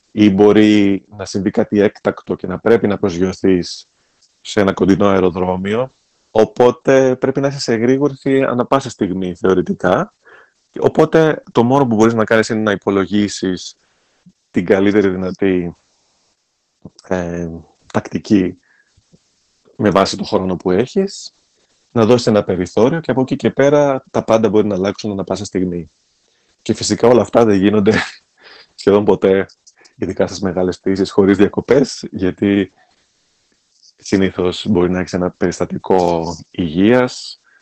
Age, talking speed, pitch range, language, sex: 30-49, 135 wpm, 90-115 Hz, Greek, male